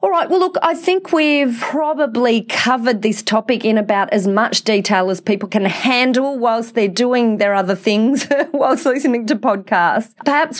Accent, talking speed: Australian, 175 wpm